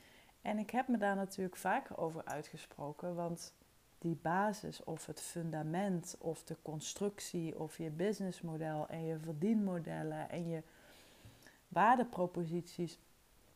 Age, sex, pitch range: 30-49, female, 160-210 Hz